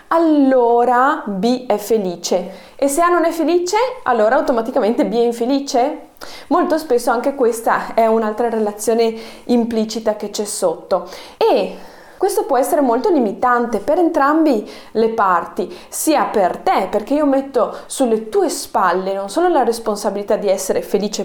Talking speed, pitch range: 145 wpm, 210-275 Hz